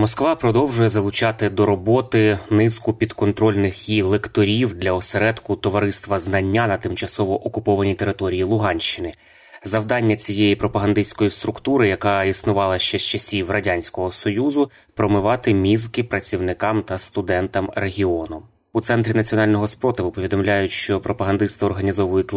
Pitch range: 100-110 Hz